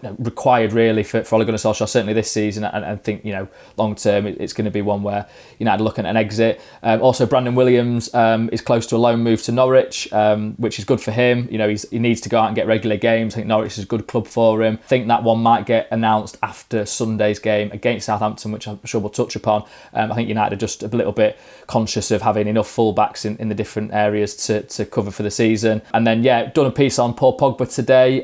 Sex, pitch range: male, 110-125 Hz